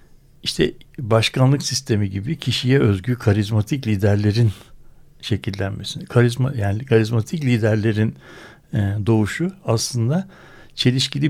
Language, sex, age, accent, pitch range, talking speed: Turkish, male, 60-79, native, 110-140 Hz, 85 wpm